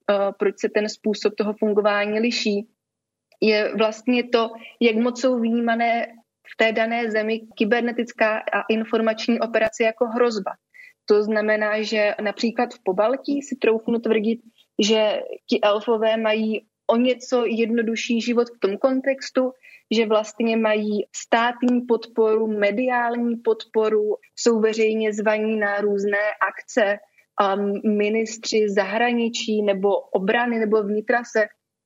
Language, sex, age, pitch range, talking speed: Slovak, female, 20-39, 210-235 Hz, 120 wpm